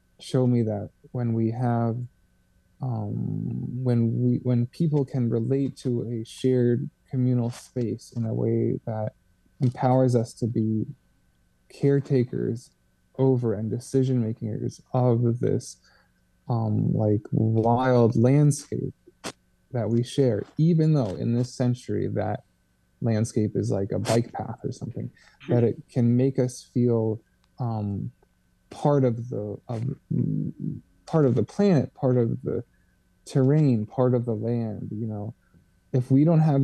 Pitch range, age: 110-130 Hz, 20-39